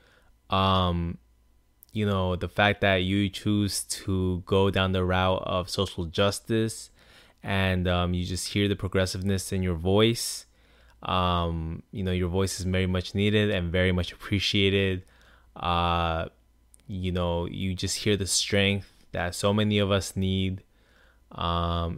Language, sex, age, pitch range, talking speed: English, male, 20-39, 90-100 Hz, 145 wpm